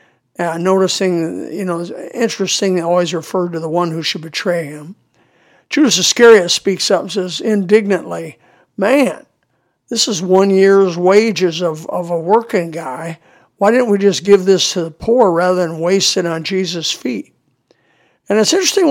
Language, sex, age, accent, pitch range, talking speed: English, male, 60-79, American, 170-215 Hz, 160 wpm